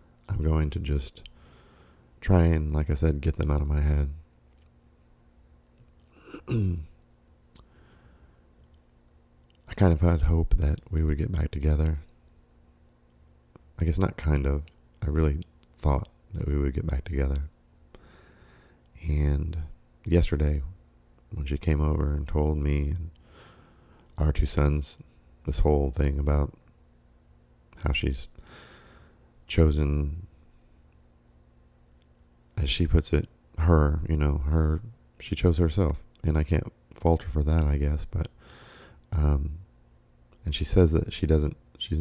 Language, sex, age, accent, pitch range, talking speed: English, male, 40-59, American, 65-80 Hz, 125 wpm